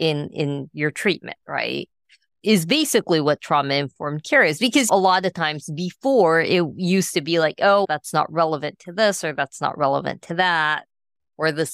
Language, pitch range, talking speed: English, 145-185 Hz, 185 wpm